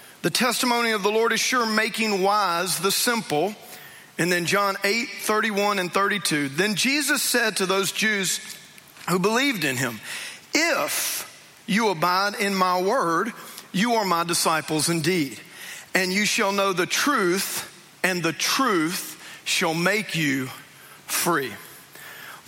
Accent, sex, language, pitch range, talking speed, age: American, male, English, 165-205 Hz, 140 wpm, 40-59